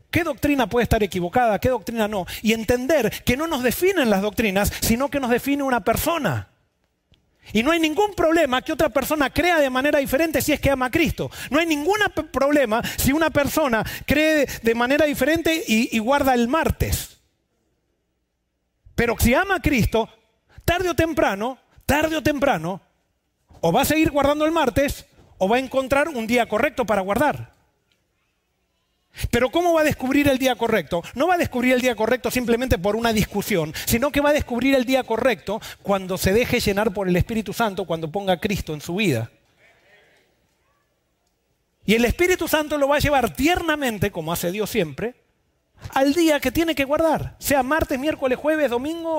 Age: 40-59